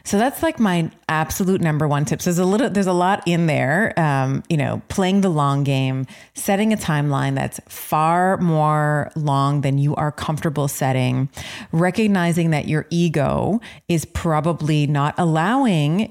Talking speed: 160 wpm